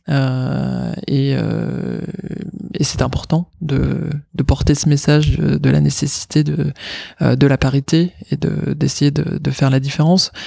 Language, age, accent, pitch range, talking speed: French, 20-39, French, 140-165 Hz, 155 wpm